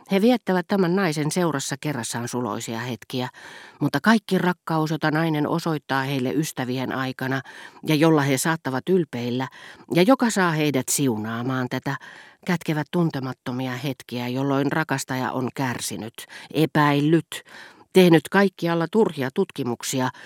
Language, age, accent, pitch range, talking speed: Finnish, 40-59, native, 125-160 Hz, 120 wpm